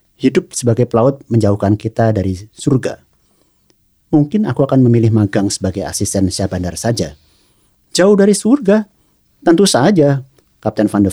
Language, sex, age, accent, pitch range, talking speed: Indonesian, male, 50-69, native, 95-130 Hz, 130 wpm